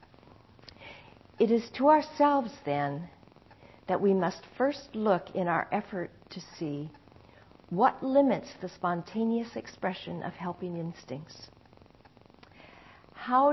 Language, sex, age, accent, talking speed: English, female, 50-69, American, 105 wpm